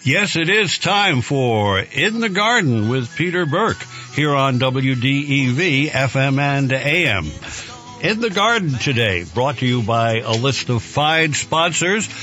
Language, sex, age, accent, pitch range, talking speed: English, male, 60-79, American, 110-140 Hz, 140 wpm